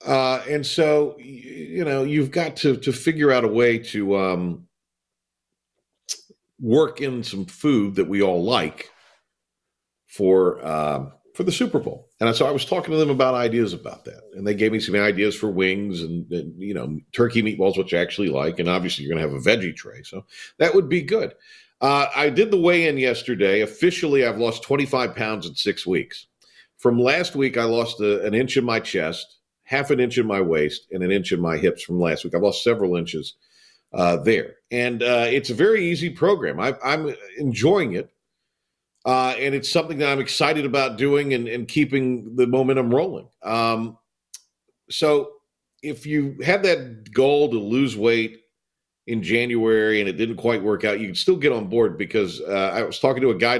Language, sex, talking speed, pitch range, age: English, male, 195 wpm, 105-140 Hz, 50-69